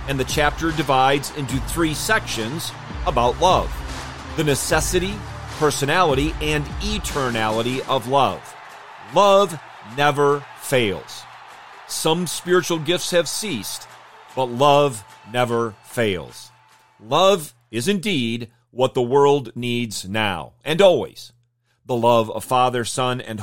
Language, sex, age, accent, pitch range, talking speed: English, male, 40-59, American, 120-145 Hz, 115 wpm